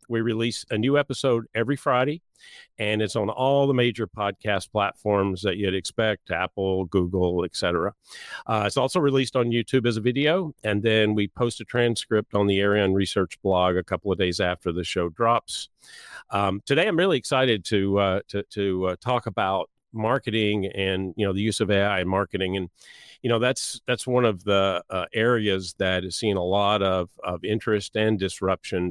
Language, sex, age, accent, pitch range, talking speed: English, male, 50-69, American, 95-110 Hz, 185 wpm